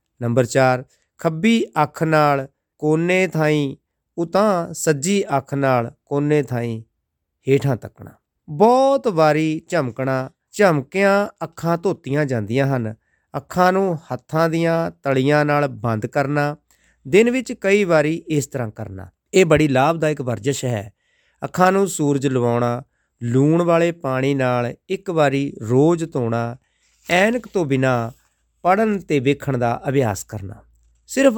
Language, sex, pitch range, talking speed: Punjabi, male, 120-165 Hz, 105 wpm